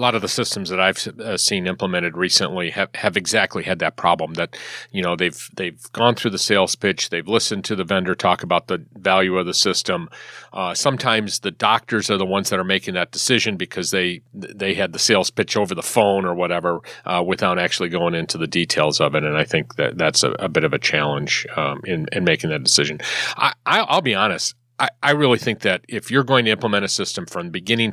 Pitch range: 85-115 Hz